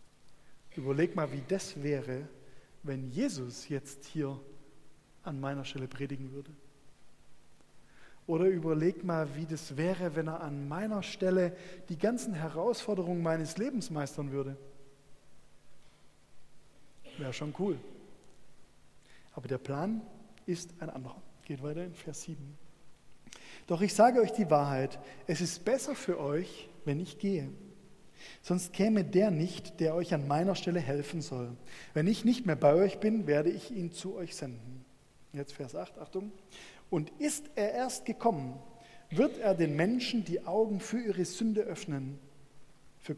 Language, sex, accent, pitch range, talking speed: German, male, German, 145-195 Hz, 145 wpm